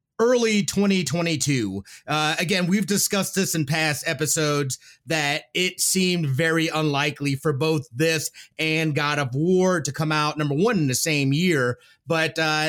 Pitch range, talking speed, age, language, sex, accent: 150-185 Hz, 150 wpm, 30-49, English, male, American